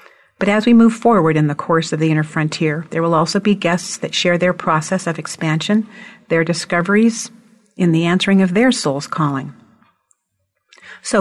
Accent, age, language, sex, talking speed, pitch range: American, 50-69, English, female, 175 wpm, 170-205 Hz